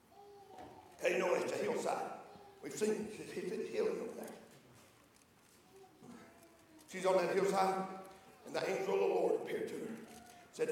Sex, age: male, 50-69